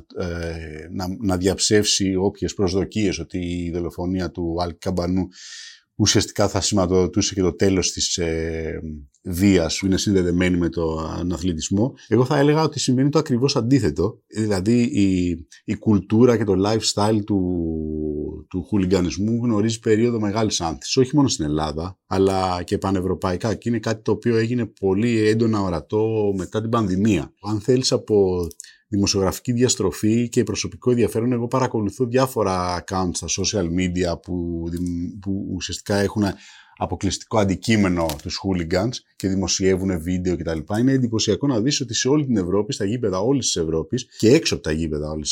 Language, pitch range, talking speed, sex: Greek, 90-125 Hz, 150 wpm, male